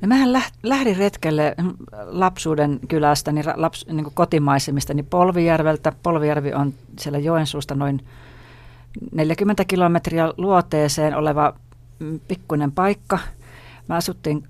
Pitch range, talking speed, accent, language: 145-170 Hz, 105 wpm, native, Finnish